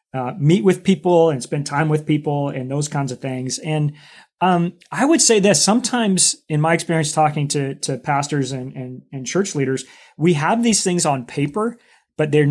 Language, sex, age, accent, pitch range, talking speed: English, male, 30-49, American, 140-165 Hz, 190 wpm